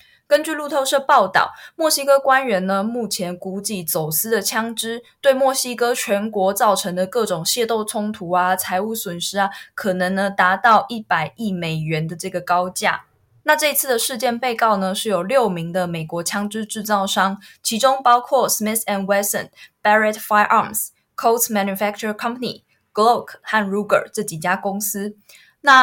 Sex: female